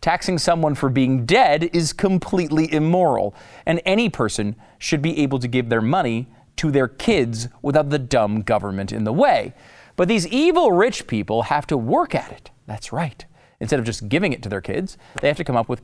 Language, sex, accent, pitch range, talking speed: English, male, American, 115-180 Hz, 205 wpm